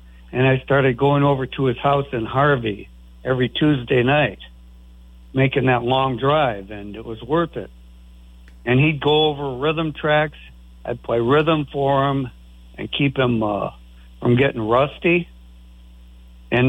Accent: American